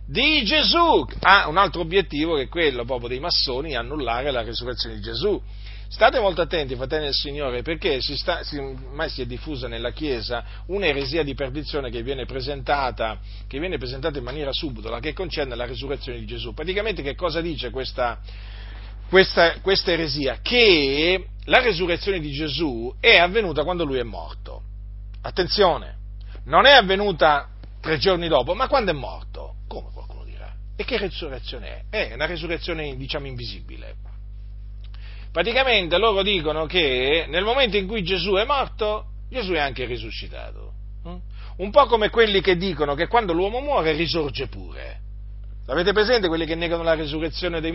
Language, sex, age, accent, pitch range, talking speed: Italian, male, 40-59, native, 115-180 Hz, 155 wpm